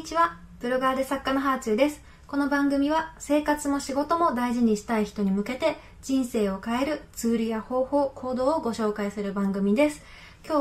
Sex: female